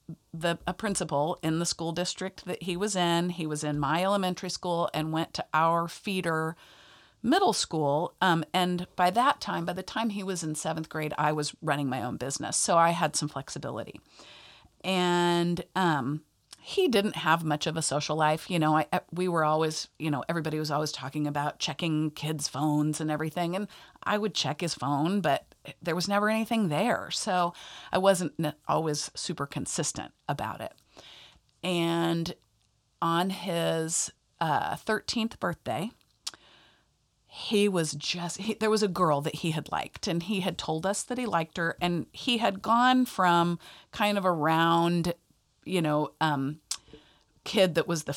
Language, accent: English, American